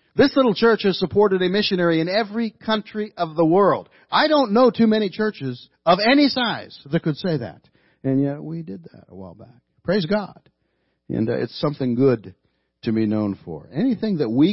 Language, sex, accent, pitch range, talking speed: English, male, American, 110-160 Hz, 195 wpm